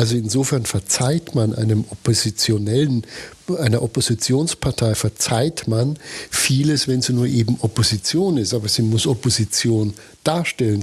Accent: German